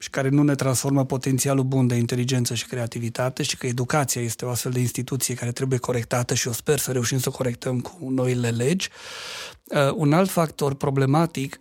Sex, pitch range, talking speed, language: male, 125-150 Hz, 190 wpm, Romanian